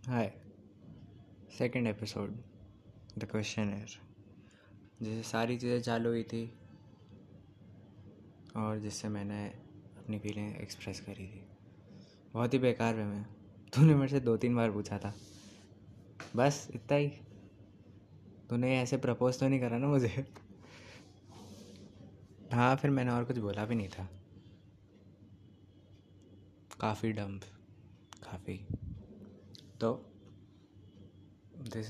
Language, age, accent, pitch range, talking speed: Hindi, 20-39, native, 100-115 Hz, 110 wpm